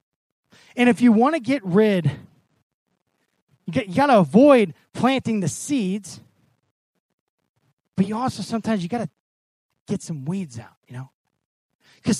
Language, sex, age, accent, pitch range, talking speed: English, male, 30-49, American, 155-230 Hz, 140 wpm